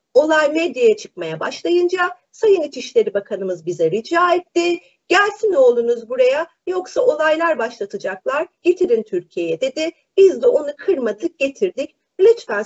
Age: 40-59